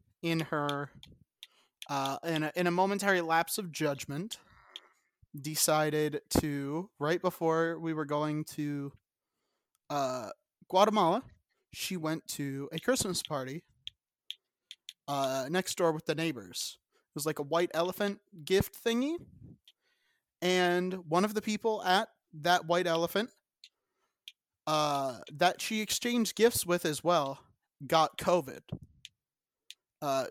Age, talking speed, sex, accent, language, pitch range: 30-49, 120 wpm, male, American, English, 150-180 Hz